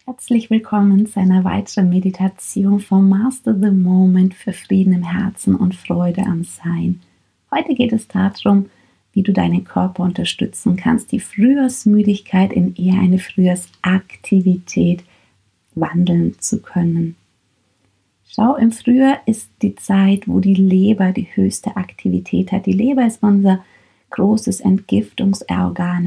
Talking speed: 130 wpm